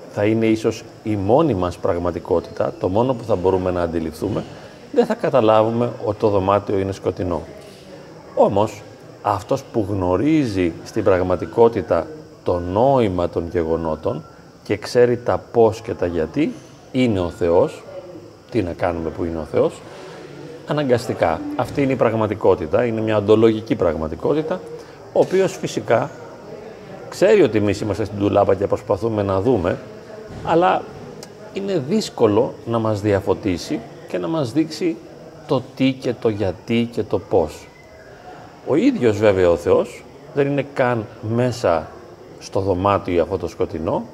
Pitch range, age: 100-130 Hz, 30-49